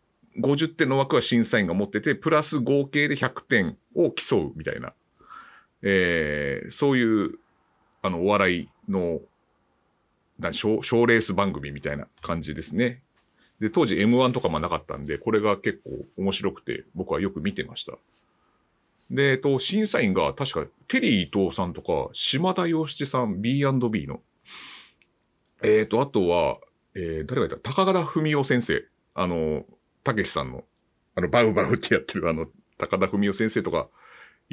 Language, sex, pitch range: Japanese, male, 100-145 Hz